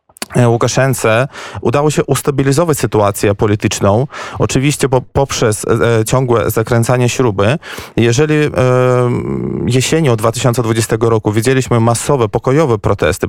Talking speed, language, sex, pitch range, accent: 85 wpm, Polish, male, 115-135 Hz, native